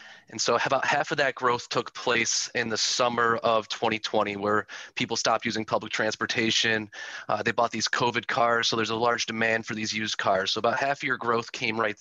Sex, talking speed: male, 215 wpm